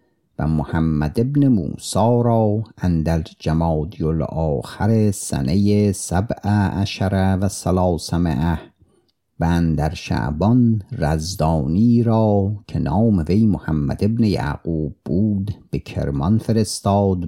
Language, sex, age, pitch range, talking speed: Persian, male, 50-69, 80-110 Hz, 95 wpm